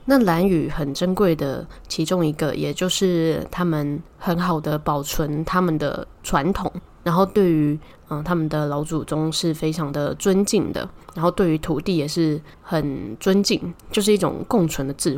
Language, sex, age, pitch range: Chinese, female, 10-29, 155-185 Hz